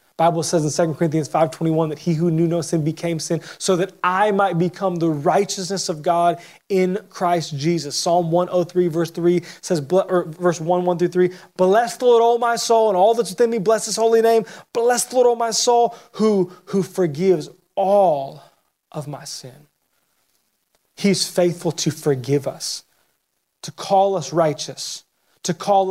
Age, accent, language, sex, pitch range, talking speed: 20-39, American, English, male, 150-185 Hz, 175 wpm